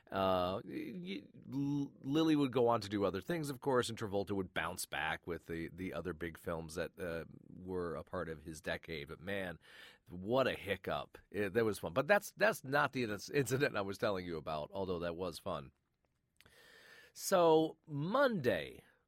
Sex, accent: male, American